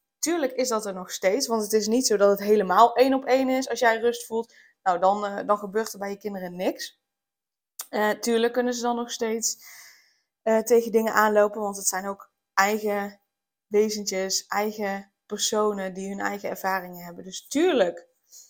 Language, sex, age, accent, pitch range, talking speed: Dutch, female, 20-39, Dutch, 200-240 Hz, 190 wpm